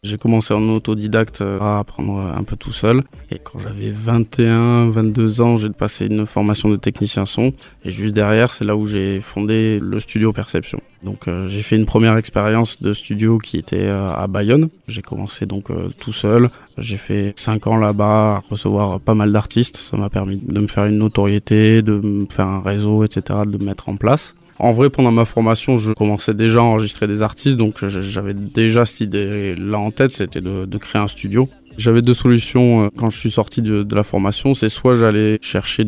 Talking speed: 195 wpm